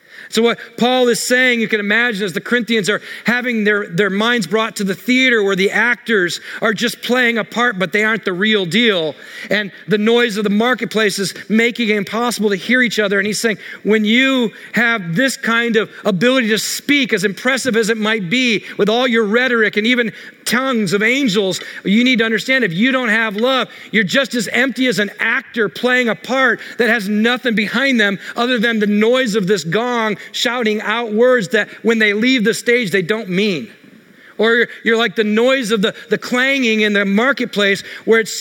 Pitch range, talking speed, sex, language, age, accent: 210-245 Hz, 205 wpm, male, English, 40-59, American